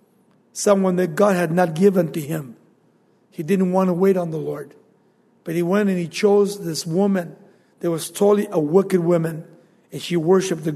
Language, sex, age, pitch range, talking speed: English, male, 50-69, 195-240 Hz, 190 wpm